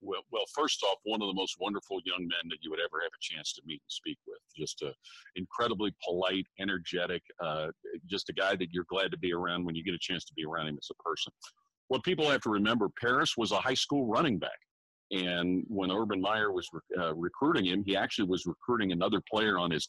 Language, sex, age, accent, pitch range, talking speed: English, male, 50-69, American, 90-120 Hz, 240 wpm